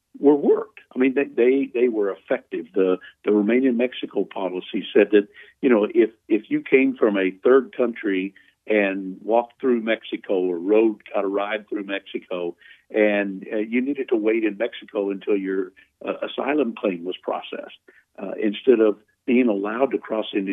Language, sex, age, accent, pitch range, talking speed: English, male, 60-79, American, 100-130 Hz, 170 wpm